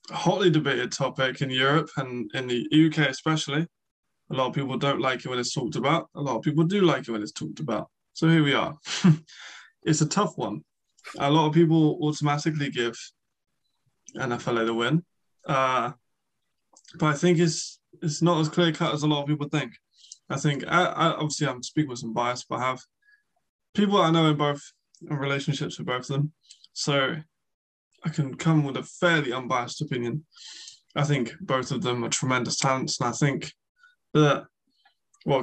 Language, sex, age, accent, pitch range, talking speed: English, male, 20-39, British, 130-160 Hz, 185 wpm